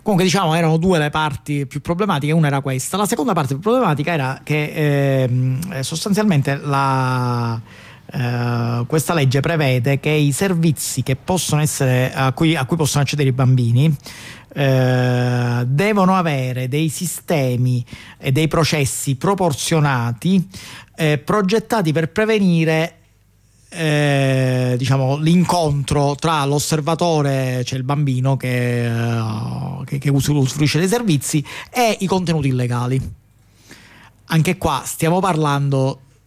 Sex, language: male, Italian